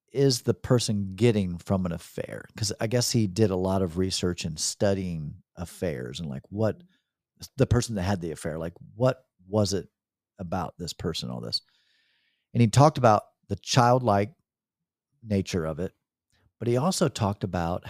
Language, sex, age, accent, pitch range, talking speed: English, male, 50-69, American, 100-135 Hz, 170 wpm